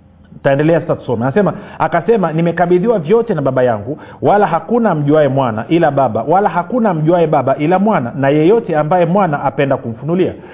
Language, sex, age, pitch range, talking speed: Swahili, male, 40-59, 150-195 Hz, 160 wpm